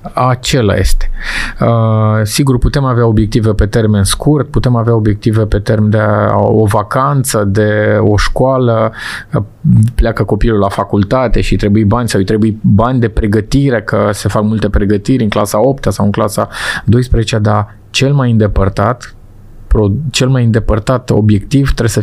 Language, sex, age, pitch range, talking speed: Romanian, male, 20-39, 105-125 Hz, 155 wpm